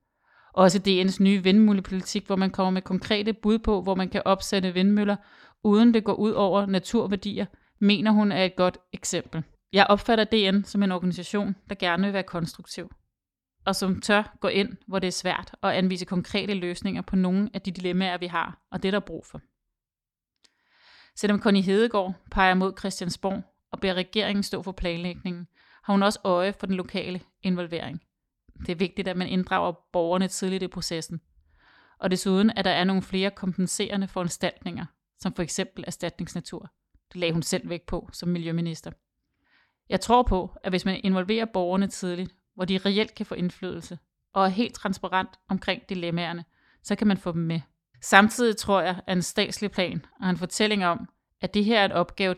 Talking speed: 185 wpm